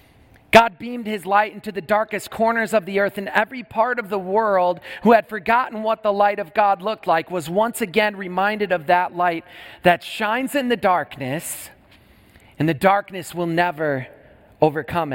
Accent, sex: American, male